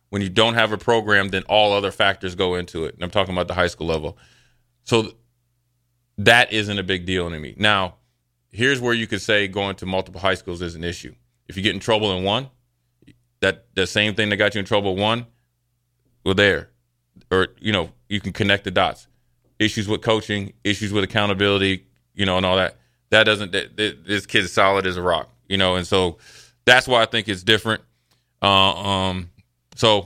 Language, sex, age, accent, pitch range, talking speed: English, male, 30-49, American, 95-120 Hz, 210 wpm